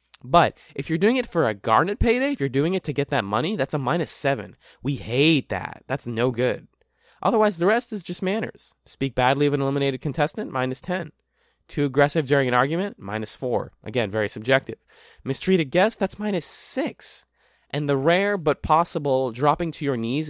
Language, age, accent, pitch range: English, 20-39, American, 115-165 Hz